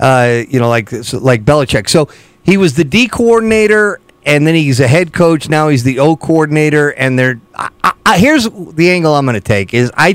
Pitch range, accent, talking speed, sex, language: 130-175 Hz, American, 215 wpm, male, English